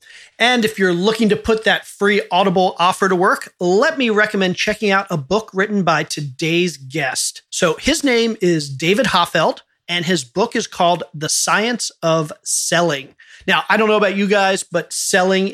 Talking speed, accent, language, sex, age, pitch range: 180 wpm, American, English, male, 40-59, 165-200 Hz